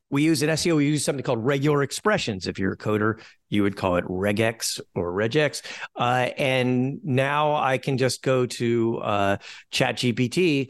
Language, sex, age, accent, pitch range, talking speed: English, male, 50-69, American, 105-135 Hz, 170 wpm